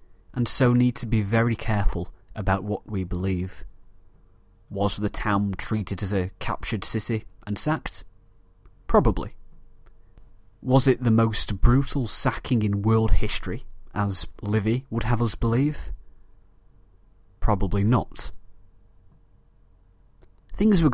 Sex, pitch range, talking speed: male, 95-115 Hz, 120 wpm